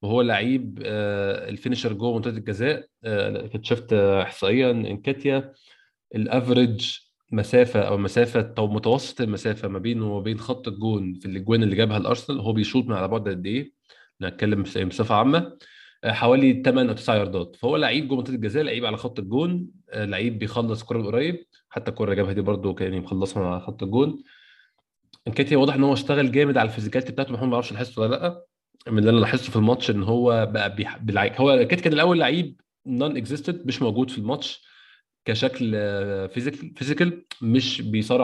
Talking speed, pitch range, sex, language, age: 170 wpm, 110-135 Hz, male, Arabic, 20-39